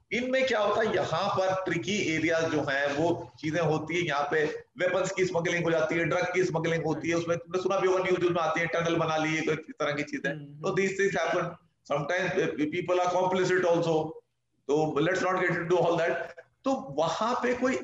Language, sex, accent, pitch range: Hindi, male, native, 150-200 Hz